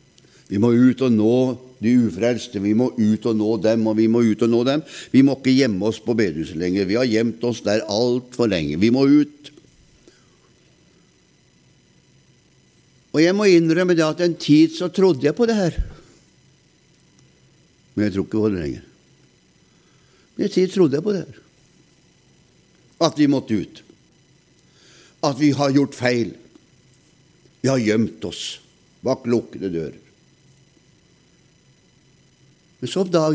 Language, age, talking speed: Danish, 60-79, 150 wpm